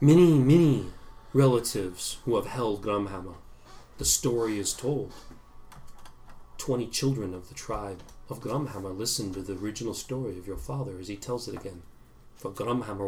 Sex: male